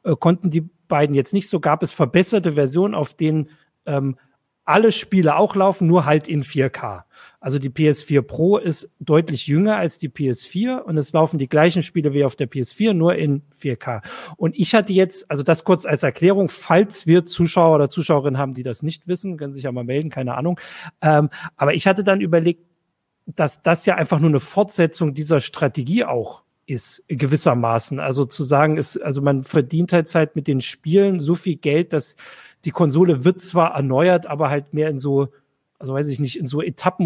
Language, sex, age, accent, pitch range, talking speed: German, male, 40-59, German, 140-170 Hz, 195 wpm